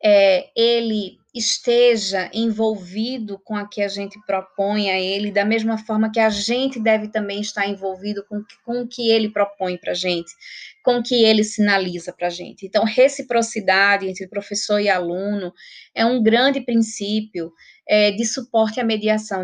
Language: Portuguese